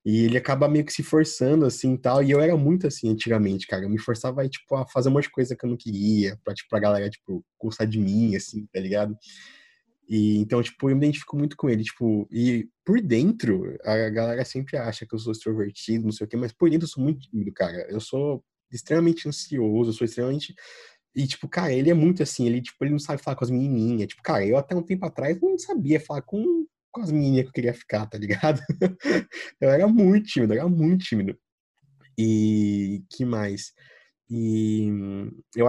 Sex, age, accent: male, 20-39, Brazilian